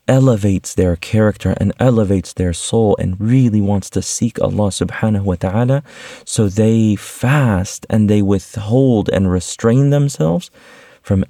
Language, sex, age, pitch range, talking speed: English, male, 30-49, 90-115 Hz, 140 wpm